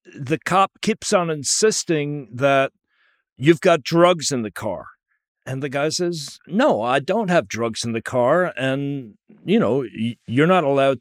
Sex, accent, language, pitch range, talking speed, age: male, American, English, 140-180 Hz, 165 wpm, 50-69